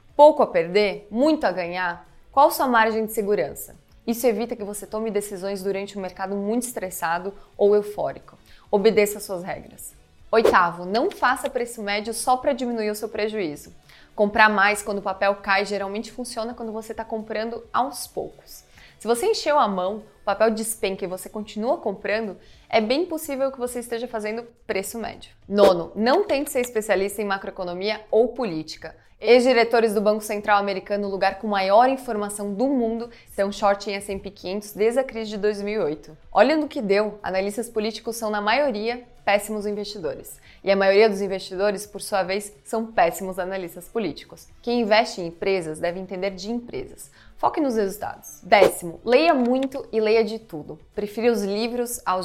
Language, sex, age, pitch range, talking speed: English, female, 20-39, 195-235 Hz, 170 wpm